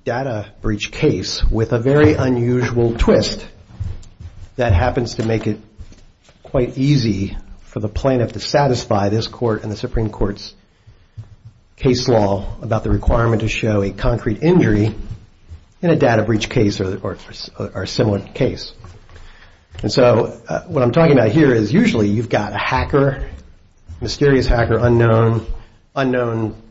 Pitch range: 100-130 Hz